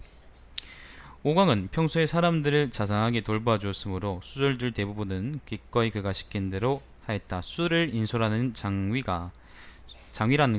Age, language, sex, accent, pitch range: 20-39, Korean, male, native, 90-125 Hz